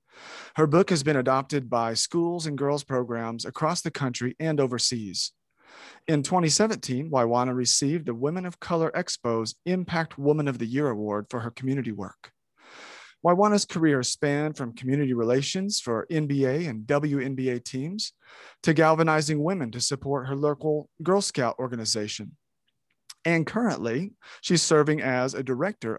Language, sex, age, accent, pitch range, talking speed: English, male, 40-59, American, 125-160 Hz, 145 wpm